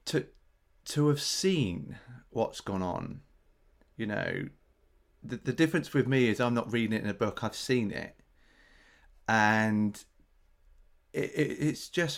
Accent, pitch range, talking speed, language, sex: British, 100-125 Hz, 150 wpm, English, male